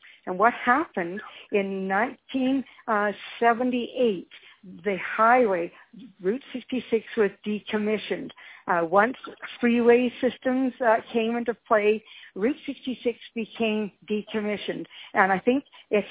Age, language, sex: 60-79, English, female